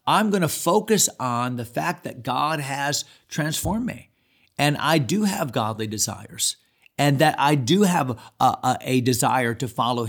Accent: American